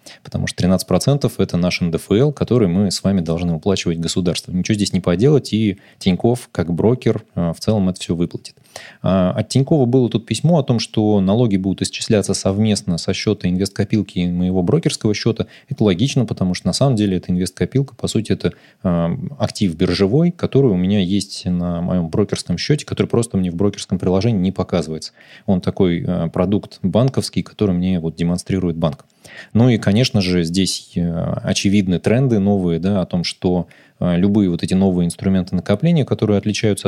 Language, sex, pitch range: Russian, male, 90-110 Hz